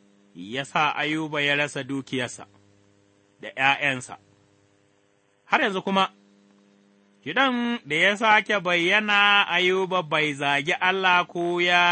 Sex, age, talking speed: male, 30-49, 95 wpm